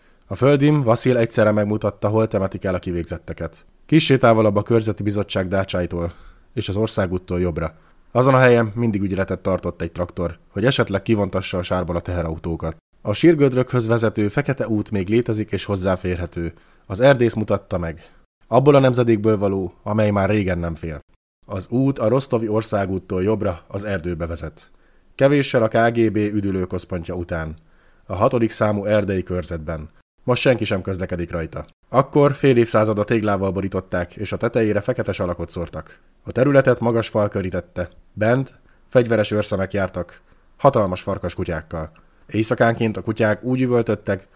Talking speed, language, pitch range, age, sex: 145 wpm, Hungarian, 90-115 Hz, 30-49, male